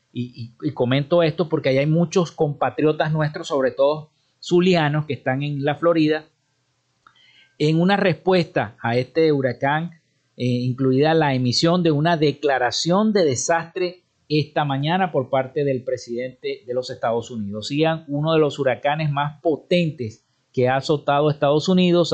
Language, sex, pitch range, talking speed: Spanish, male, 135-165 Hz, 145 wpm